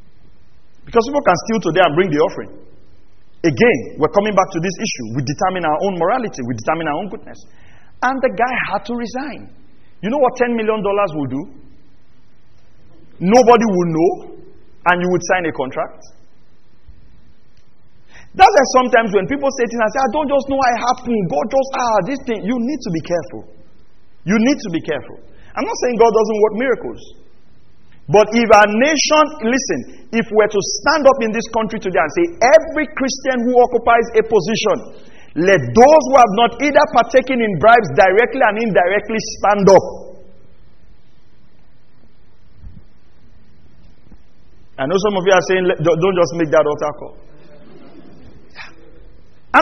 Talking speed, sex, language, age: 165 wpm, male, English, 40-59